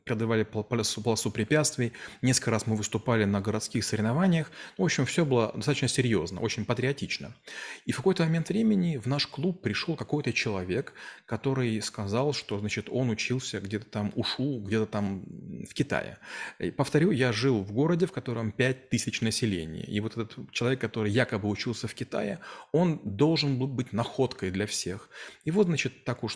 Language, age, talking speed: Russian, 30-49, 170 wpm